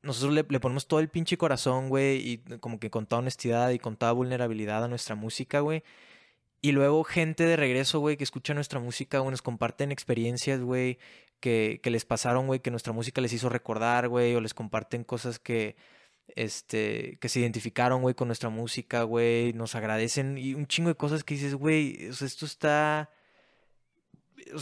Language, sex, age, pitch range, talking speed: Spanish, male, 20-39, 120-150 Hz, 195 wpm